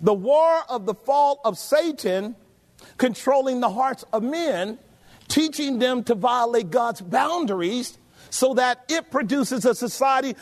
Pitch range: 185-250 Hz